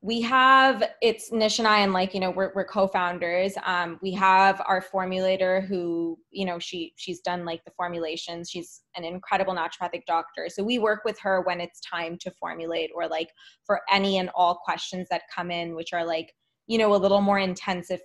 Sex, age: female, 20-39